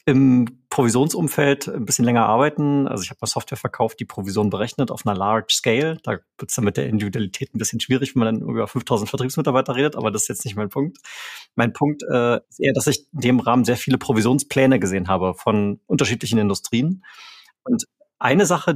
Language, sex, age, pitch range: German, male, 40-59, 115-145 Hz